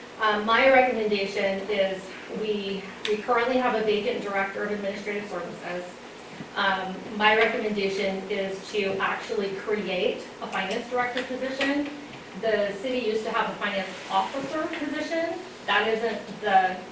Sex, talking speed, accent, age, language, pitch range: female, 130 wpm, American, 30-49, English, 195-230 Hz